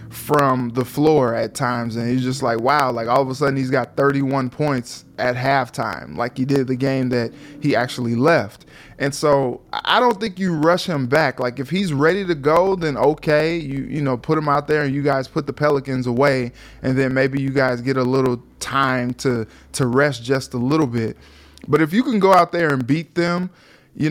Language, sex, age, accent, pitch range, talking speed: English, male, 20-39, American, 130-150 Hz, 220 wpm